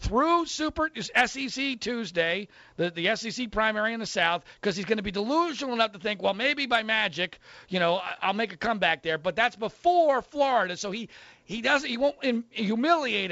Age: 40-59